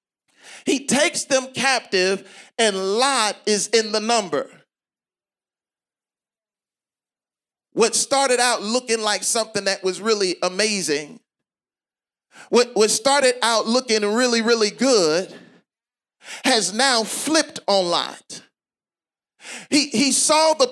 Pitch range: 215-270 Hz